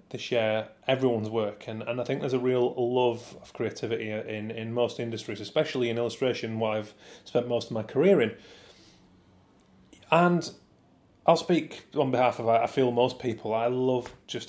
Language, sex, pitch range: English, male, 110-130 Hz